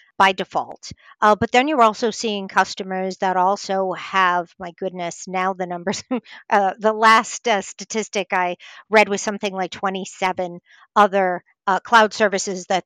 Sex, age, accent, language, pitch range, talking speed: female, 50-69, American, English, 190-225 Hz, 155 wpm